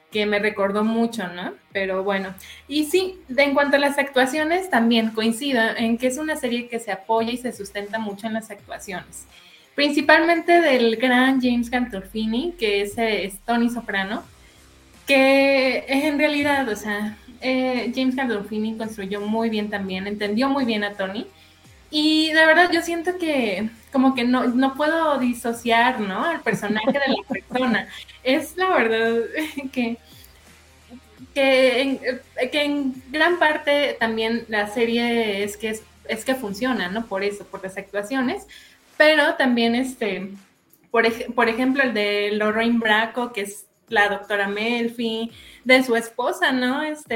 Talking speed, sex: 155 wpm, female